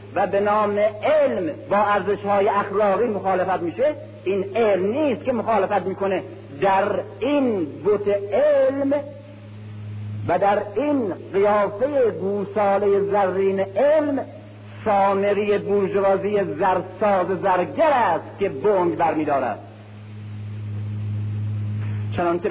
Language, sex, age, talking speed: Persian, male, 50-69, 95 wpm